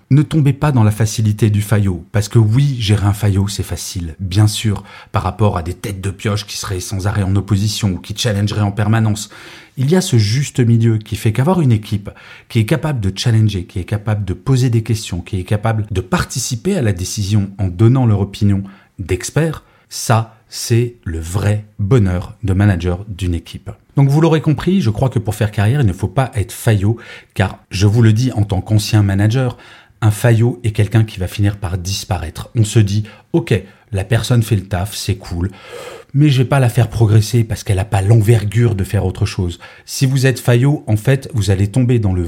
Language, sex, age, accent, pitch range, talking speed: French, male, 40-59, French, 100-120 Hz, 215 wpm